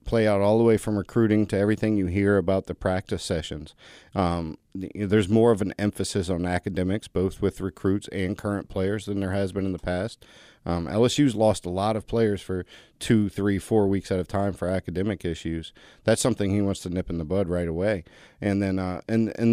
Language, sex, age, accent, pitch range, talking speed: English, male, 40-59, American, 95-110 Hz, 215 wpm